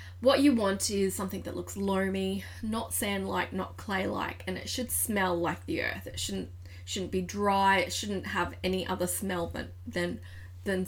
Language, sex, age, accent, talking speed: English, female, 20-39, Australian, 180 wpm